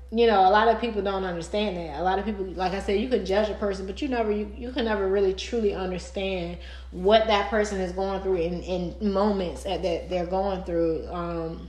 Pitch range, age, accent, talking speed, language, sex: 175-205 Hz, 20-39, American, 230 wpm, English, female